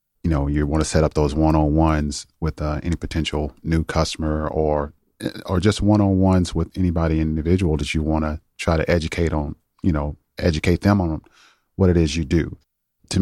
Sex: male